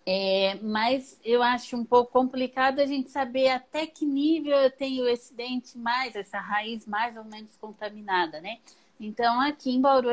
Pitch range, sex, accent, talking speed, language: 200-260 Hz, female, Brazilian, 170 wpm, Portuguese